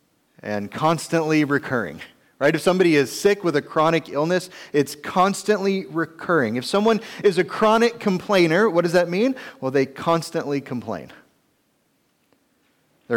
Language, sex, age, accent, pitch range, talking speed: English, male, 30-49, American, 125-180 Hz, 135 wpm